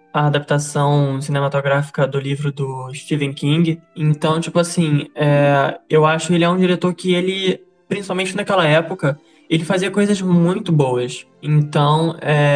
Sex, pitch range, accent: male, 150-175 Hz, Brazilian